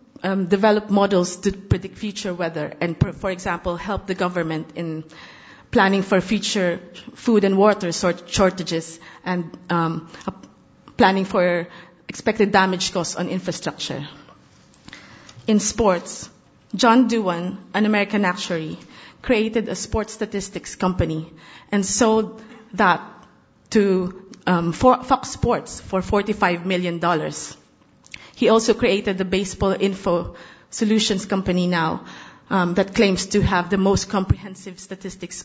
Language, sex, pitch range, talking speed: English, female, 175-215 Hz, 120 wpm